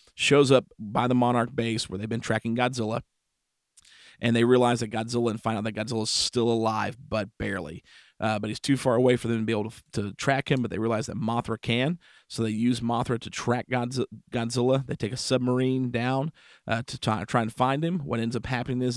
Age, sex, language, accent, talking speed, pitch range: 40-59, male, English, American, 225 wpm, 110-125 Hz